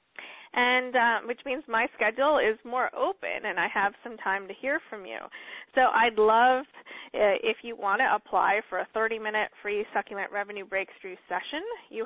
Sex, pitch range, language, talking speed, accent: female, 205-260 Hz, English, 180 wpm, American